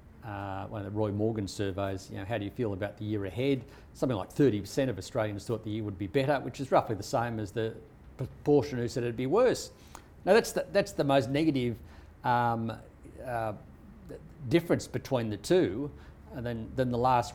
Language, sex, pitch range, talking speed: English, male, 105-130 Hz, 205 wpm